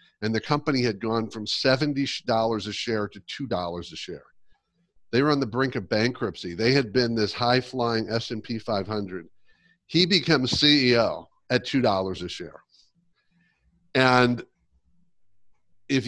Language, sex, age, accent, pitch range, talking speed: English, male, 50-69, American, 105-130 Hz, 135 wpm